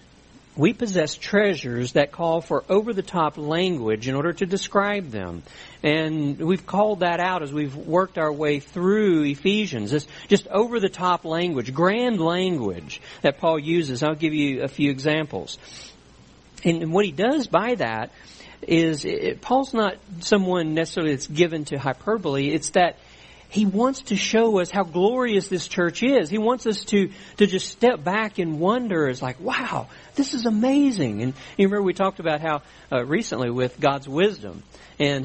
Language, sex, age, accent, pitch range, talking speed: English, male, 50-69, American, 135-195 Hz, 165 wpm